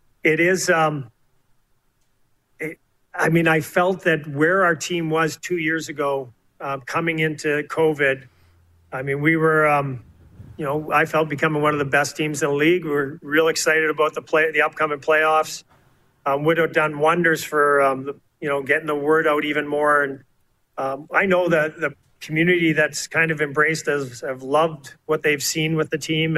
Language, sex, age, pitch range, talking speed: English, male, 40-59, 140-160 Hz, 190 wpm